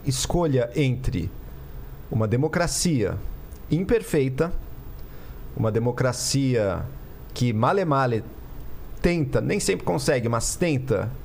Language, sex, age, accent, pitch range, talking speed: Portuguese, male, 50-69, Brazilian, 105-140 Hz, 80 wpm